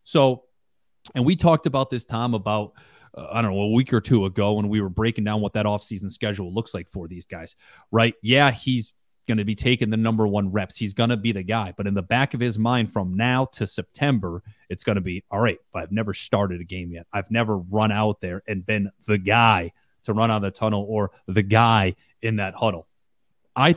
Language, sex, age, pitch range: English, male, 30-49, 100-120 Hz